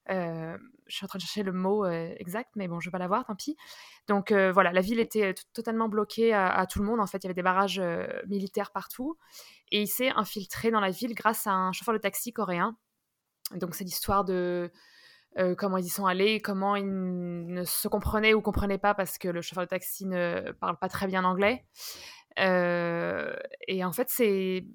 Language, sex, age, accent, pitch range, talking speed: French, female, 20-39, French, 180-215 Hz, 225 wpm